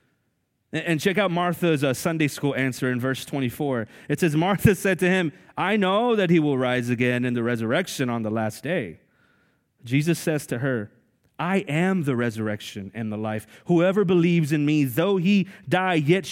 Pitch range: 125-175 Hz